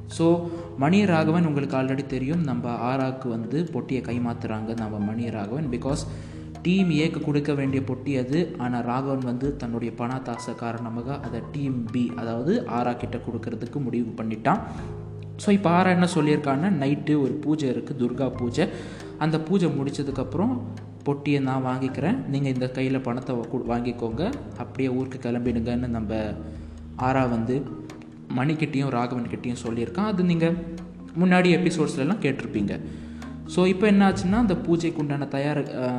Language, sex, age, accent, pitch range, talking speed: Tamil, male, 20-39, native, 115-140 Hz, 135 wpm